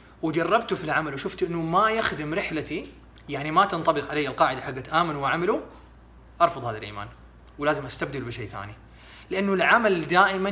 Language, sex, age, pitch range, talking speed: Arabic, male, 30-49, 130-165 Hz, 150 wpm